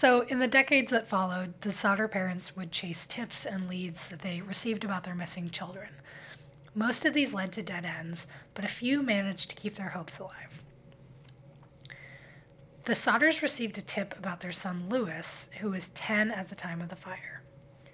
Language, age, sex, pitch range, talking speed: English, 20-39, female, 155-215 Hz, 185 wpm